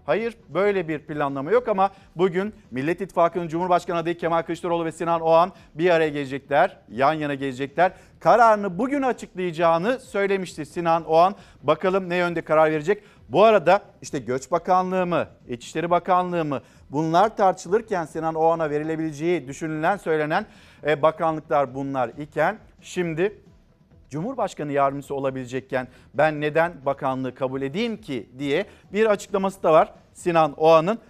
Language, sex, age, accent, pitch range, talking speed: Turkish, male, 50-69, native, 150-190 Hz, 135 wpm